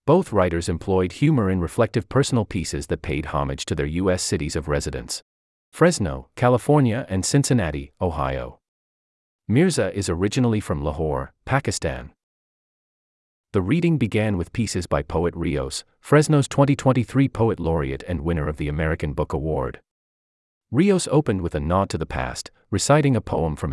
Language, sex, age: English, male, 40-59